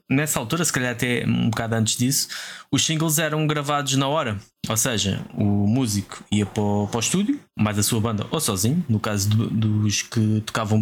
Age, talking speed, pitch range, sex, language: 20-39, 205 wpm, 110-140 Hz, male, Portuguese